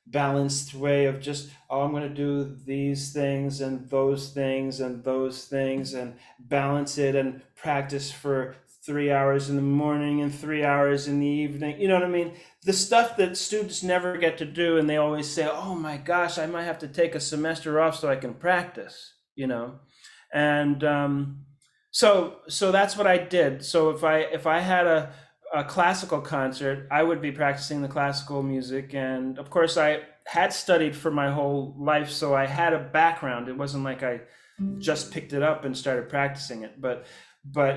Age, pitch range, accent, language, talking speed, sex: 30-49, 135-160 Hz, American, English, 195 wpm, male